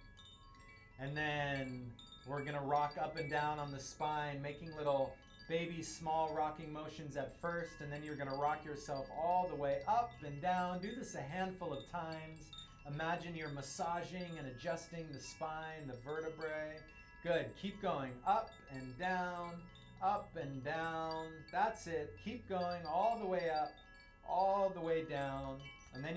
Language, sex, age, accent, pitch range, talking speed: English, male, 30-49, American, 135-170 Hz, 160 wpm